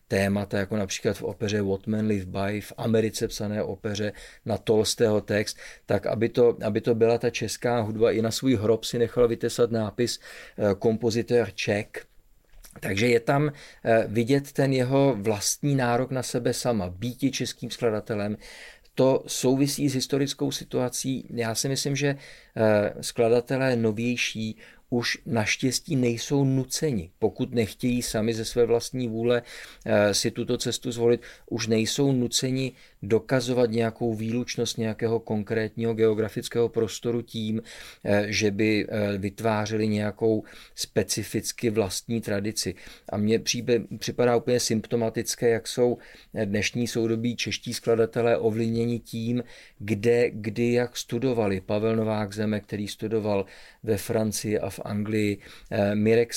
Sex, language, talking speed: male, Czech, 125 wpm